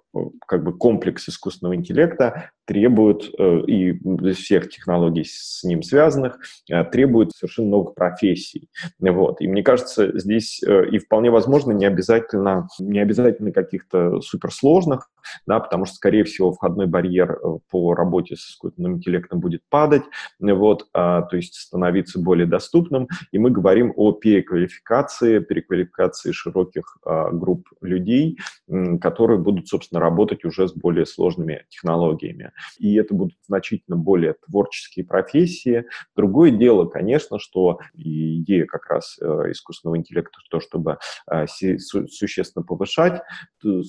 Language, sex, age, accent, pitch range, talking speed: Russian, male, 20-39, native, 90-110 Hz, 120 wpm